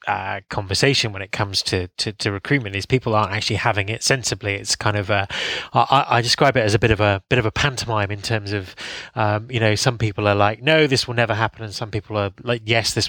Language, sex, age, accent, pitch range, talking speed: English, male, 20-39, British, 105-125 Hz, 250 wpm